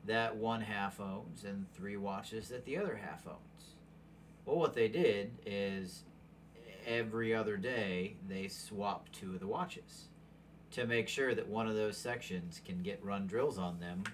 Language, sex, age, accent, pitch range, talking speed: English, male, 40-59, American, 100-165 Hz, 170 wpm